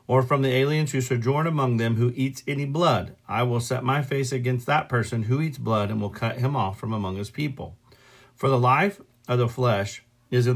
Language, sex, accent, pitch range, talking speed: English, male, American, 115-135 Hz, 225 wpm